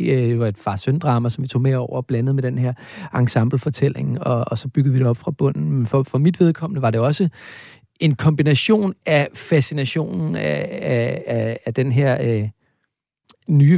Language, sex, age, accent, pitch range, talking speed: Danish, male, 40-59, native, 120-145 Hz, 185 wpm